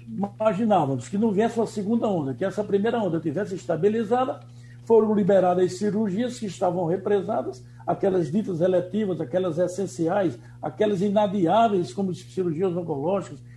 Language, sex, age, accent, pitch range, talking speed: Portuguese, male, 60-79, Brazilian, 165-215 Hz, 135 wpm